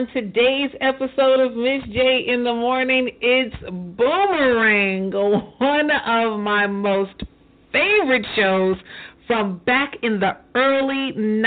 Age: 40-59